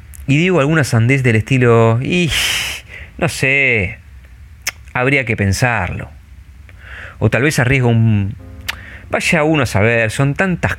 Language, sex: Spanish, male